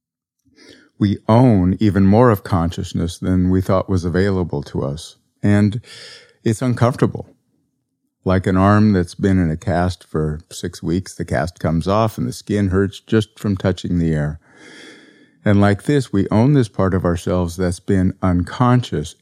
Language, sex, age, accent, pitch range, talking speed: English, male, 50-69, American, 90-120 Hz, 160 wpm